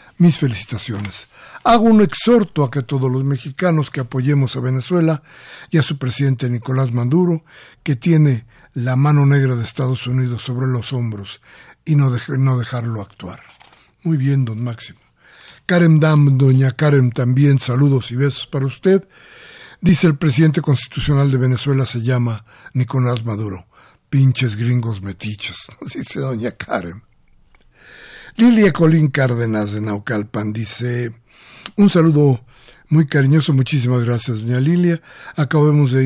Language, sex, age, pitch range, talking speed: Spanish, male, 60-79, 125-155 Hz, 135 wpm